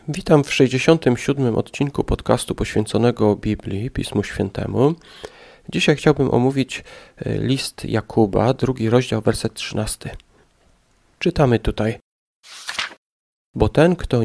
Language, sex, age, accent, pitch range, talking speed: Polish, male, 40-59, native, 115-140 Hz, 95 wpm